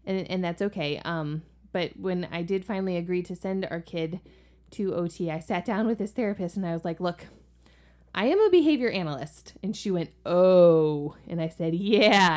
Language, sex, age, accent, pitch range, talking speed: English, female, 20-39, American, 160-215 Hz, 200 wpm